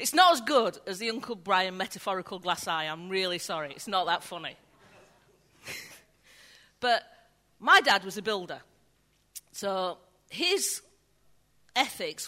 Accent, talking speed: British, 130 wpm